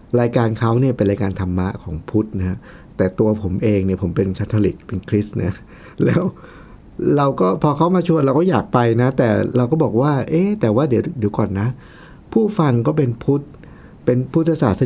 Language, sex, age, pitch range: Thai, male, 60-79, 100-135 Hz